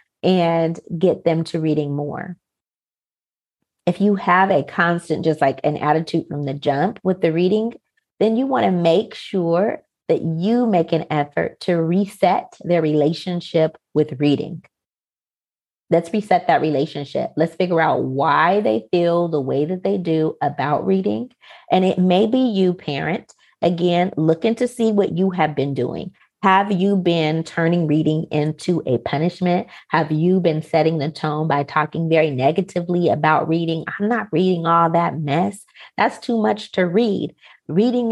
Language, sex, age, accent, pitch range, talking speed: English, female, 30-49, American, 155-185 Hz, 160 wpm